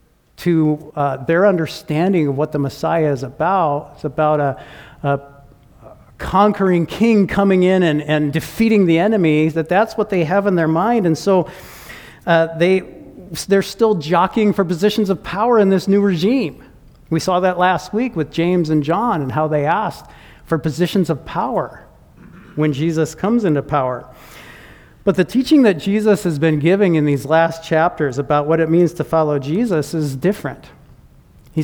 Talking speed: 170 wpm